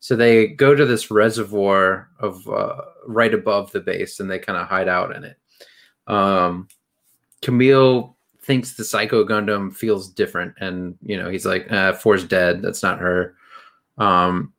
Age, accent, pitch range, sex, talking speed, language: 30-49, American, 95-115 Hz, male, 165 wpm, English